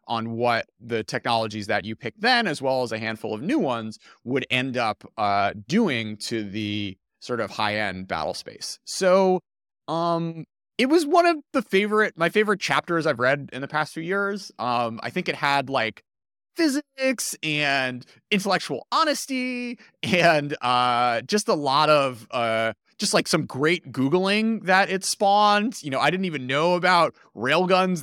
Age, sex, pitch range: 30-49, male, 115-180 Hz